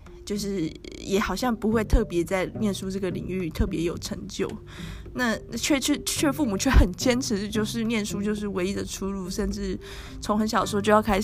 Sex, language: female, Chinese